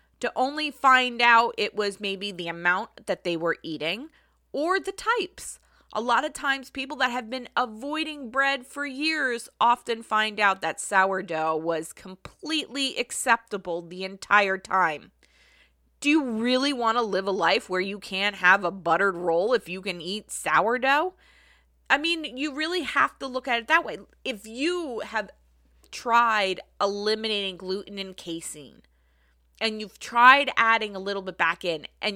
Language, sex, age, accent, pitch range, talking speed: English, female, 20-39, American, 170-240 Hz, 165 wpm